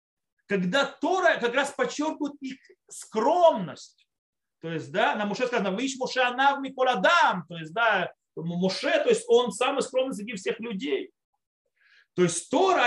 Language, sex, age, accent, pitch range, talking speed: Russian, male, 30-49, native, 185-280 Hz, 150 wpm